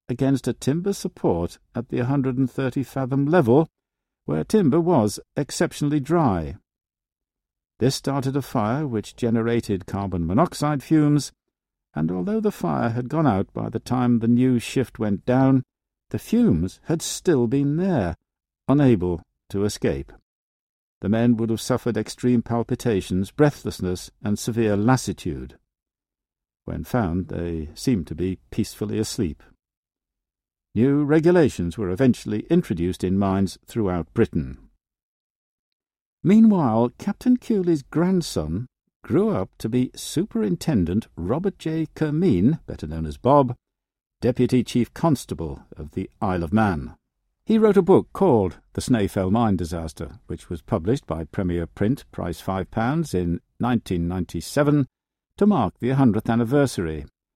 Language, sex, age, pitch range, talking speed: English, male, 50-69, 95-145 Hz, 130 wpm